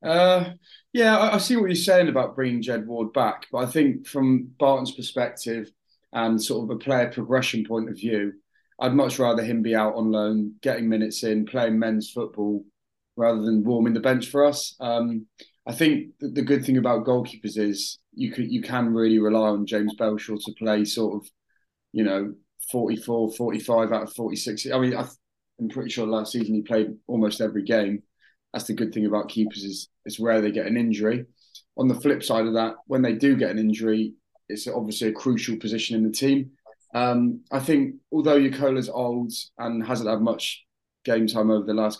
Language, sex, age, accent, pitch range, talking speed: English, male, 30-49, British, 110-135 Hz, 195 wpm